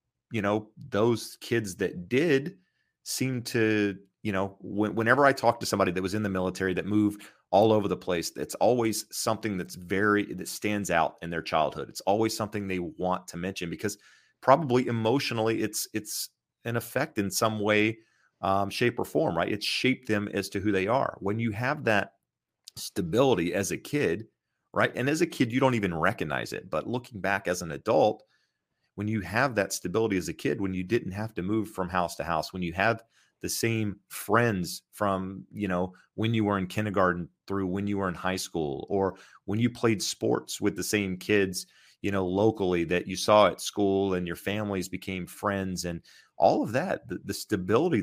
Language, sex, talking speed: English, male, 200 wpm